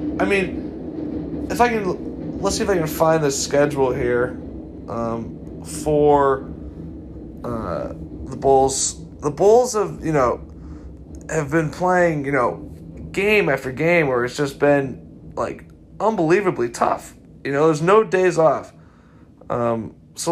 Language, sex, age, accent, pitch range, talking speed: English, male, 20-39, American, 120-175 Hz, 140 wpm